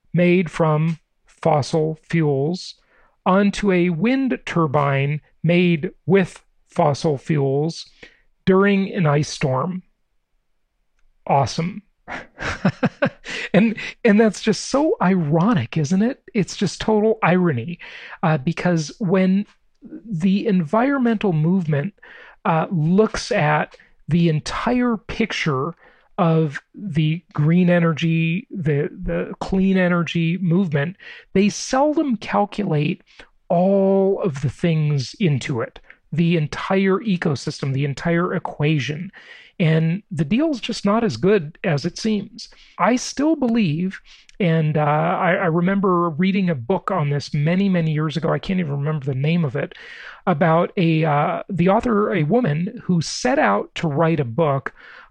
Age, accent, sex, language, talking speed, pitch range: 40-59, American, male, English, 125 wpm, 160-200 Hz